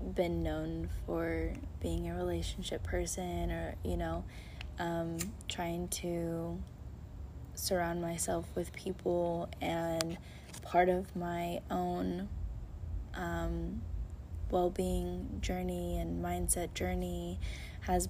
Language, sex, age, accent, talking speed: English, female, 10-29, American, 100 wpm